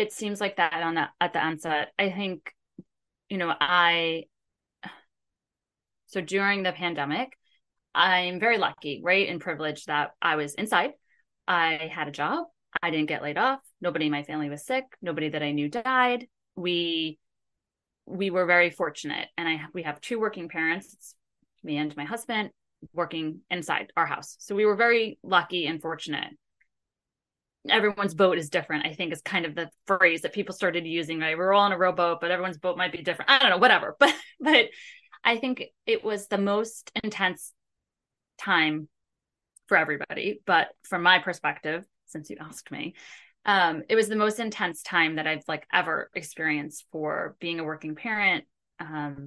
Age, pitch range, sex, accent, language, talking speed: 20-39, 155-200 Hz, female, American, English, 175 wpm